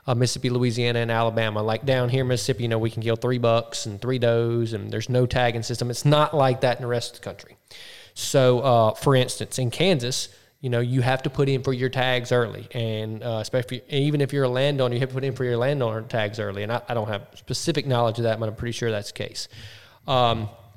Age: 20-39